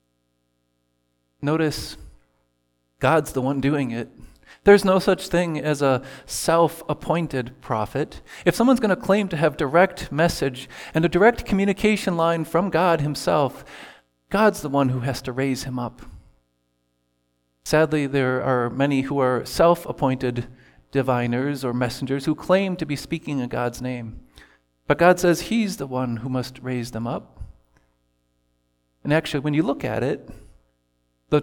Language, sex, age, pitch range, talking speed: English, male, 40-59, 120-175 Hz, 145 wpm